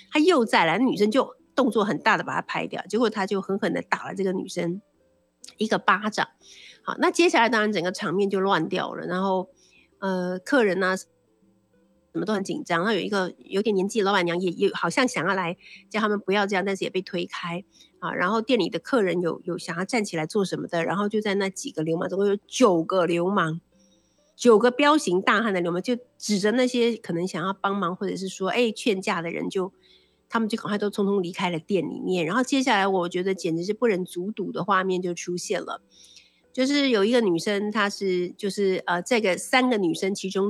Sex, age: female, 50-69